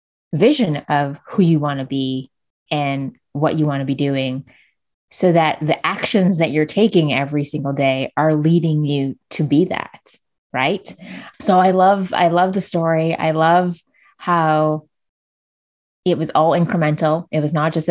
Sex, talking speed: female, 165 wpm